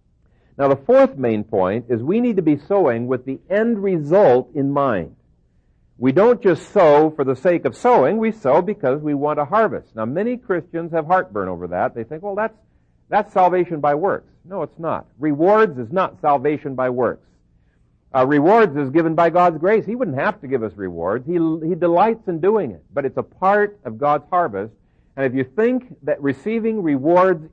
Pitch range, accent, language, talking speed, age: 125-195 Hz, American, English, 200 wpm, 60-79